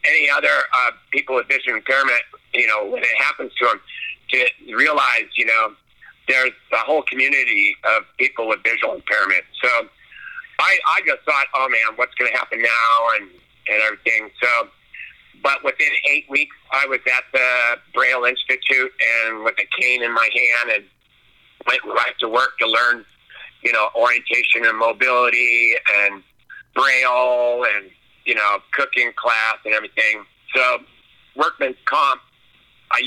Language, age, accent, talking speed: English, 50-69, American, 155 wpm